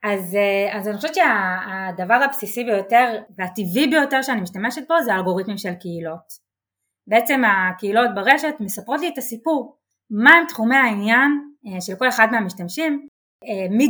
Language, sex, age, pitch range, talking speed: Hebrew, female, 20-39, 190-265 Hz, 145 wpm